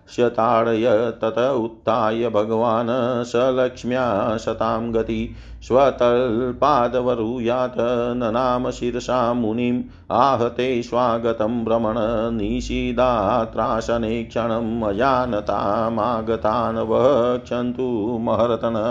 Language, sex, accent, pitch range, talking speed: Hindi, male, native, 115-125 Hz, 55 wpm